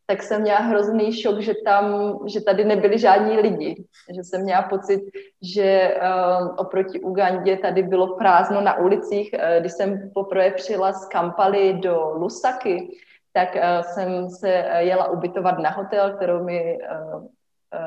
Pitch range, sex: 180-205 Hz, female